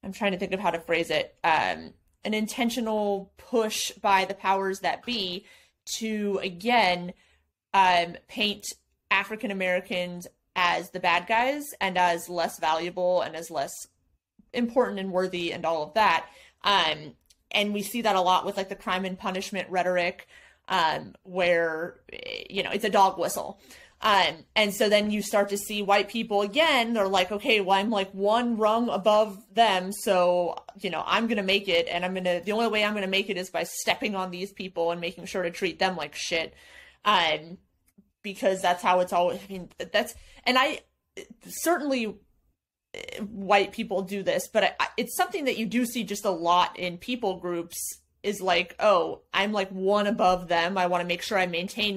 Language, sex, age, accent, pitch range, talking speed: English, female, 30-49, American, 180-215 Hz, 185 wpm